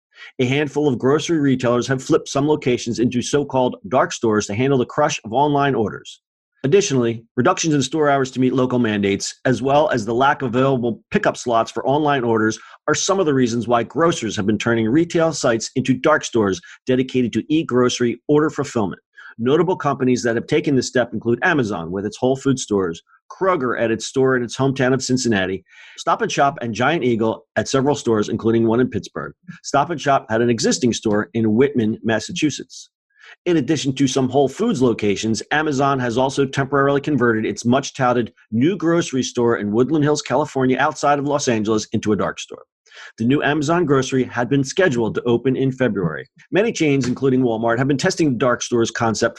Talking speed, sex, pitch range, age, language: 190 wpm, male, 115-145 Hz, 40-59, English